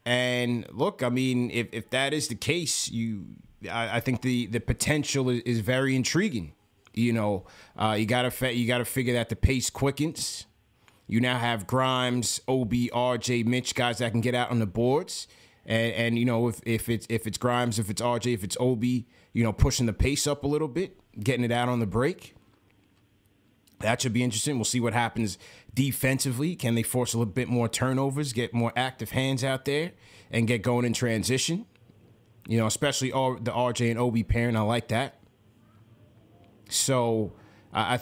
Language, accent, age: English, American, 20-39